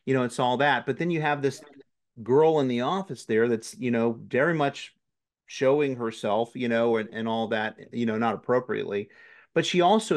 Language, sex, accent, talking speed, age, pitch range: English, male, American, 205 wpm, 40-59, 115-140 Hz